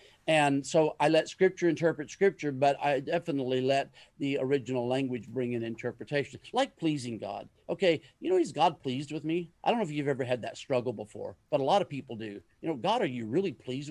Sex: male